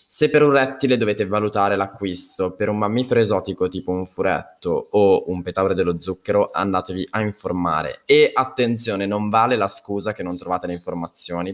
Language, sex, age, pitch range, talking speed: Italian, male, 20-39, 95-125 Hz, 170 wpm